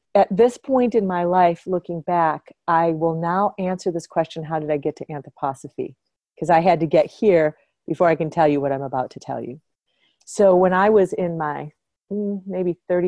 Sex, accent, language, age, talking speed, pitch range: female, American, English, 40-59, 200 wpm, 155-205 Hz